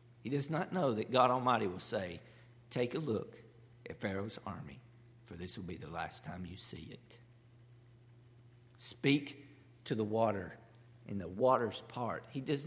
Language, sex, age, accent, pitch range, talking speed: English, male, 50-69, American, 105-125 Hz, 165 wpm